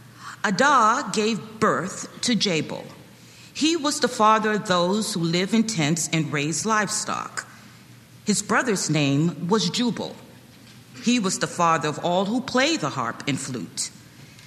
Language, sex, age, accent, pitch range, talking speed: English, female, 40-59, American, 145-215 Hz, 145 wpm